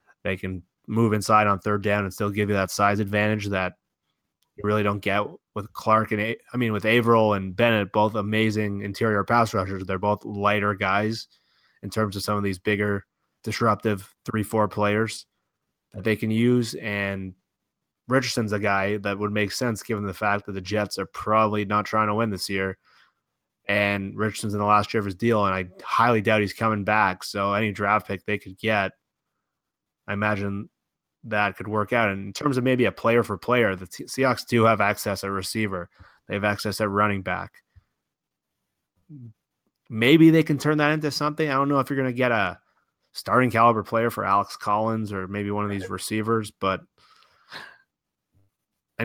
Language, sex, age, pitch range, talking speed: English, male, 20-39, 100-115 Hz, 190 wpm